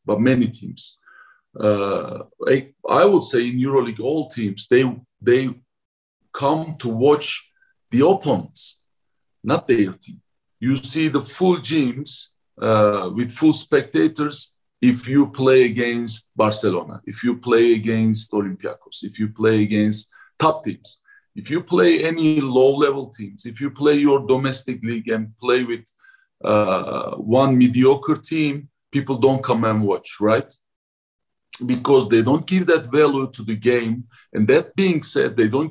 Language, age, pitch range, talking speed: English, 50-69, 115-150 Hz, 145 wpm